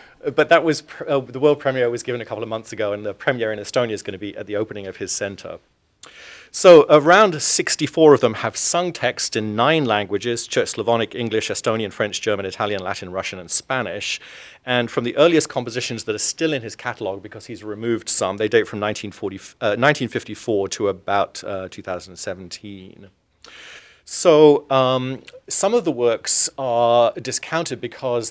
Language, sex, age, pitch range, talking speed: English, male, 40-59, 105-135 Hz, 180 wpm